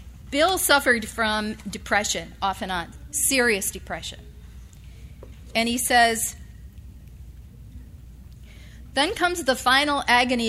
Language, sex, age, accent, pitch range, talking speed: English, female, 40-59, American, 185-260 Hz, 95 wpm